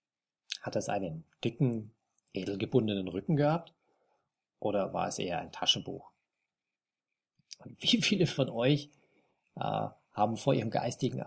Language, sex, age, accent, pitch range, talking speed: German, male, 40-59, German, 120-160 Hz, 115 wpm